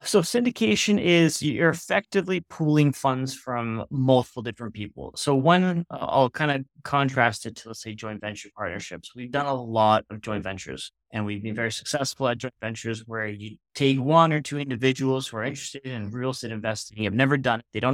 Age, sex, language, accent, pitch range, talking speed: 30-49, male, English, American, 110-135 Hz, 200 wpm